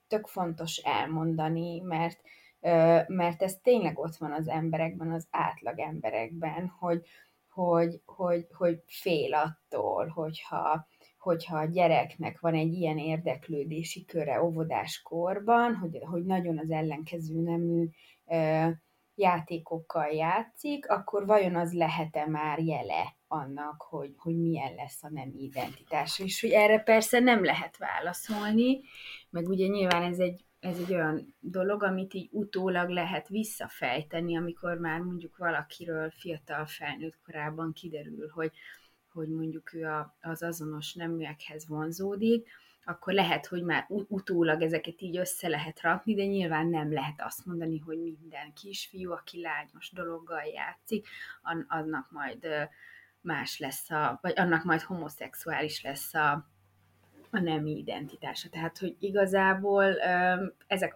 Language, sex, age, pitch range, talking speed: Hungarian, female, 20-39, 155-180 Hz, 125 wpm